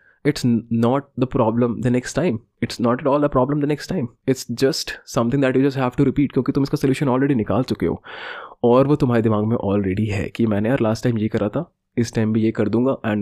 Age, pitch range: 20-39, 110-140 Hz